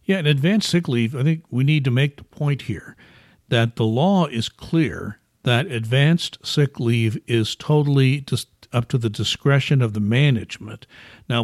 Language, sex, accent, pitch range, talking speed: English, male, American, 115-150 Hz, 180 wpm